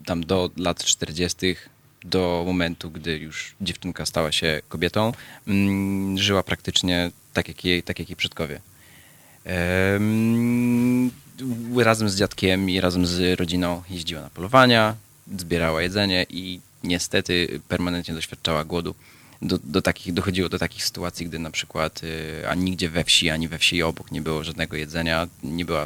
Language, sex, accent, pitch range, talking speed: Polish, male, native, 85-105 Hz, 145 wpm